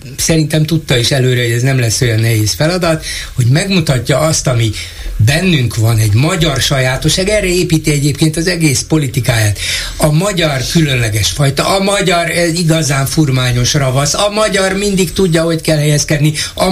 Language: Hungarian